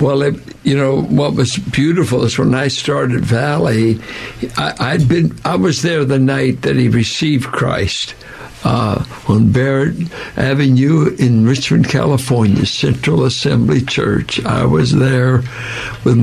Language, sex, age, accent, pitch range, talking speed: English, male, 60-79, American, 120-140 Hz, 140 wpm